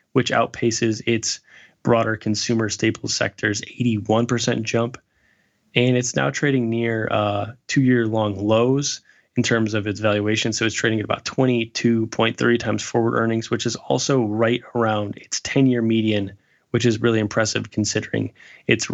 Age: 10-29